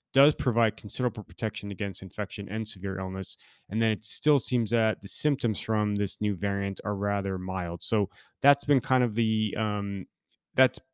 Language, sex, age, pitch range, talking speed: English, male, 20-39, 95-110 Hz, 175 wpm